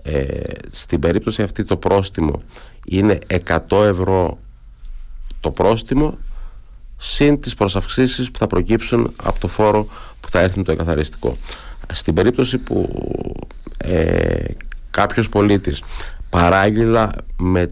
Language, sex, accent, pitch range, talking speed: Greek, male, native, 85-110 Hz, 110 wpm